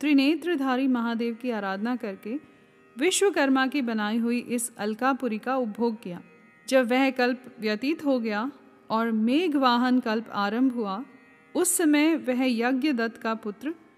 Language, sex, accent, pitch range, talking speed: Hindi, female, native, 225-280 Hz, 135 wpm